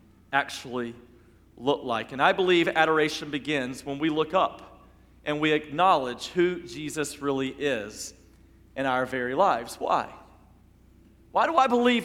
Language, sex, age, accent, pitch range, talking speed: English, male, 40-59, American, 125-210 Hz, 140 wpm